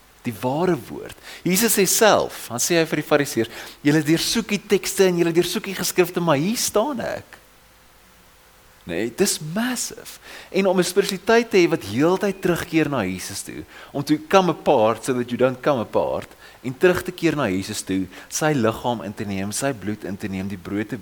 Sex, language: male, English